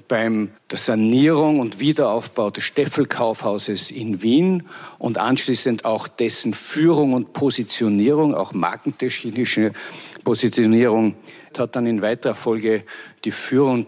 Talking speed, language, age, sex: 115 wpm, German, 50-69, male